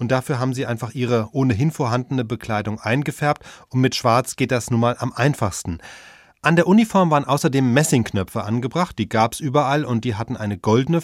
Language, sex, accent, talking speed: German, male, German, 190 wpm